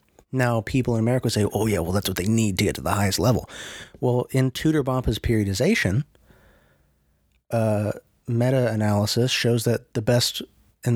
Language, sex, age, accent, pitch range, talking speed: English, male, 30-49, American, 105-135 Hz, 165 wpm